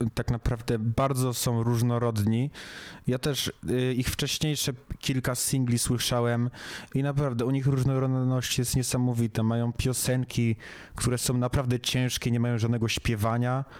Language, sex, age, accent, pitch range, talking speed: Polish, male, 20-39, native, 115-130 Hz, 125 wpm